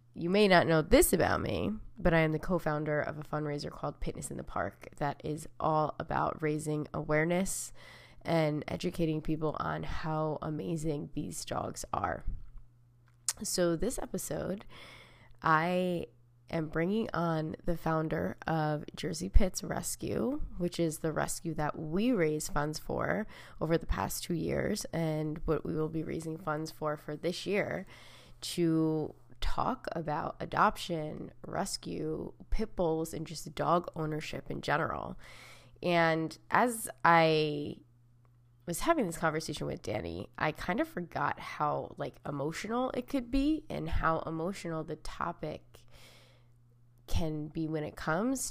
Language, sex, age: English, female, 20-39